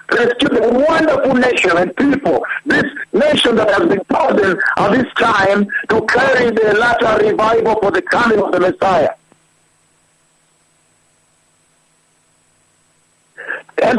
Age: 60-79